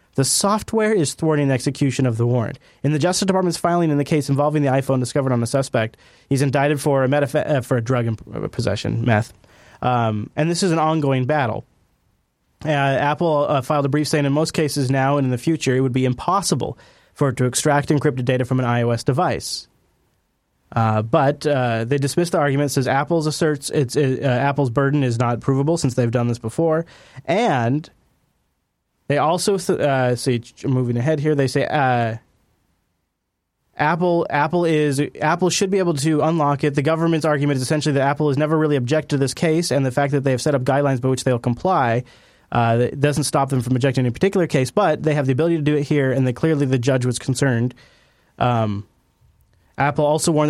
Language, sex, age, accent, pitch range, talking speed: English, male, 30-49, American, 130-150 Hz, 200 wpm